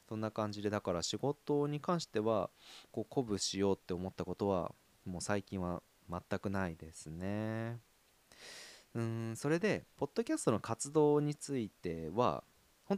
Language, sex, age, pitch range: Japanese, male, 20-39, 85-125 Hz